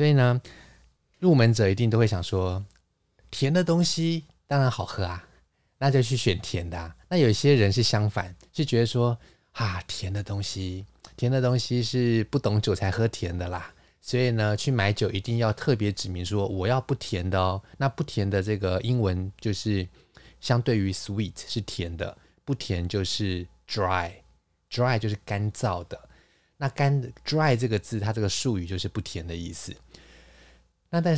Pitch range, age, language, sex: 90-120 Hz, 20-39, Chinese, male